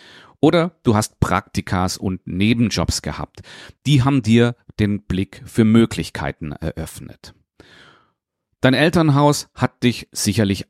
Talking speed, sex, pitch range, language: 110 wpm, male, 95-135 Hz, German